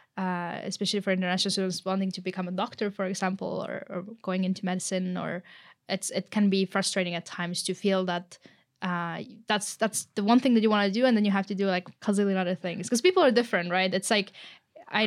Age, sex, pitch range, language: 10-29, female, 185-210 Hz, English